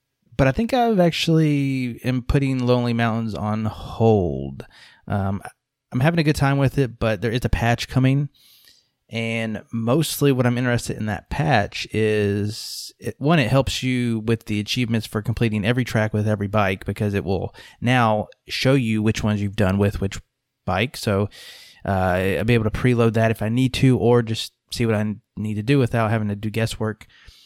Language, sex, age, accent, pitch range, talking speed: English, male, 20-39, American, 105-130 Hz, 190 wpm